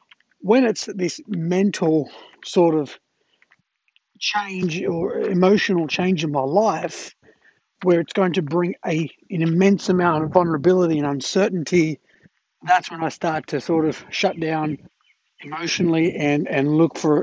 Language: English